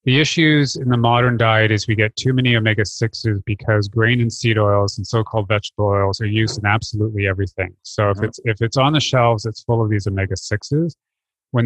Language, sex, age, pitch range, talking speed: English, male, 30-49, 100-120 Hz, 205 wpm